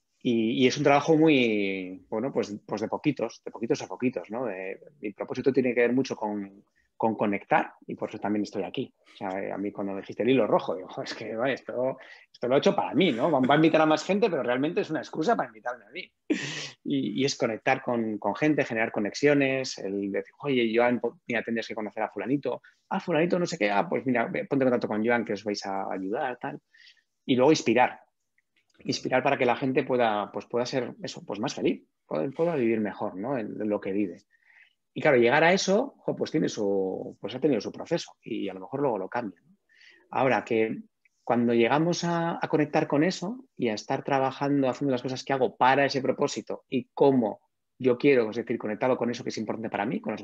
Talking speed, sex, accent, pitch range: 230 wpm, male, Spanish, 110-150 Hz